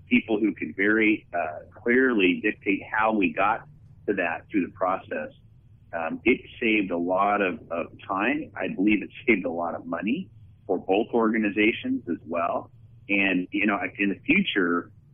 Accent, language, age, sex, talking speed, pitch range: American, English, 40-59, male, 165 wpm, 100-135 Hz